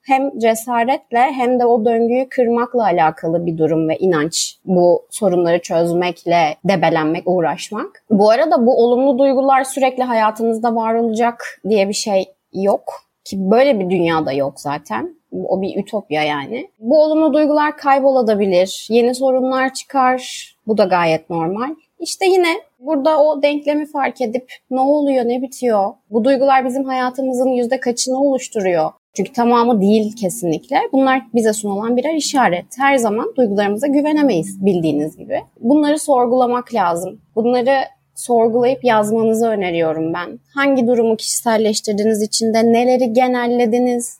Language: Turkish